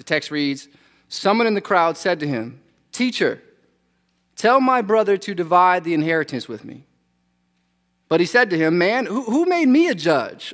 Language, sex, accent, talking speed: English, male, American, 180 wpm